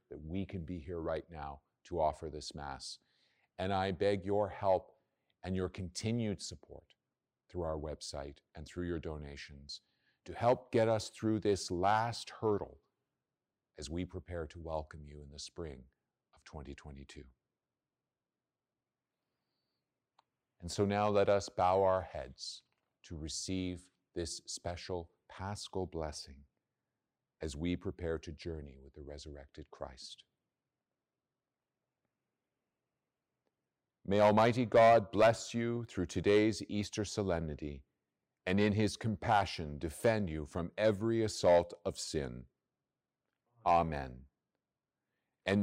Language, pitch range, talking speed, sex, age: English, 80-105 Hz, 120 wpm, male, 50-69